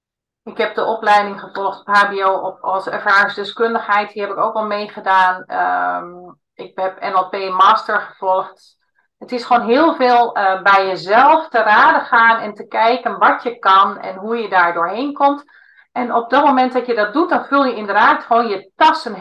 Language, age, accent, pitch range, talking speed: Dutch, 40-59, Dutch, 190-245 Hz, 185 wpm